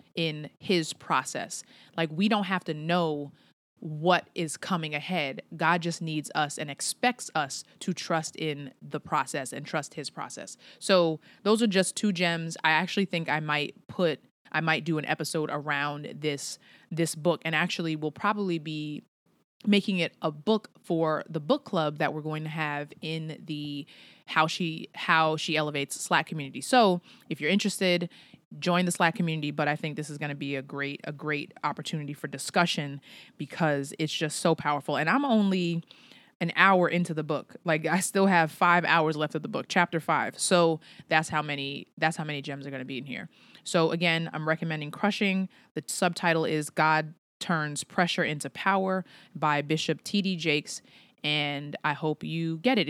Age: 20-39